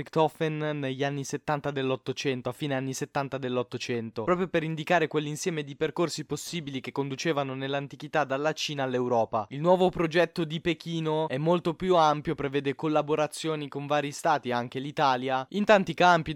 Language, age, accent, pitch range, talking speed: Italian, 20-39, native, 150-185 Hz, 150 wpm